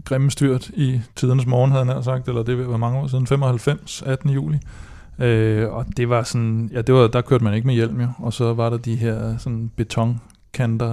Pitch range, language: 110-125 Hz, Danish